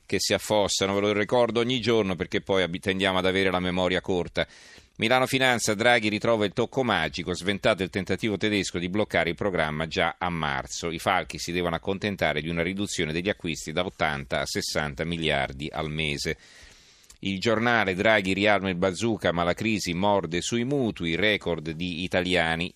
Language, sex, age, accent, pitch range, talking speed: Italian, male, 40-59, native, 85-105 Hz, 175 wpm